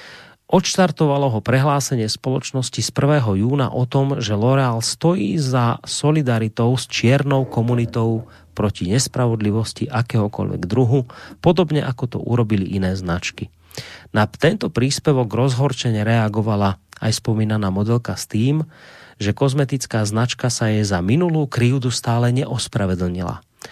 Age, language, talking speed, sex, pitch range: 30-49, Slovak, 120 wpm, male, 105-140 Hz